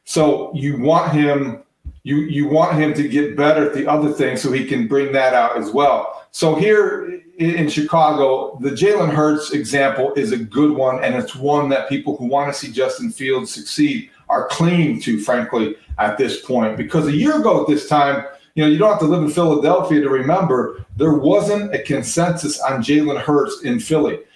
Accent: American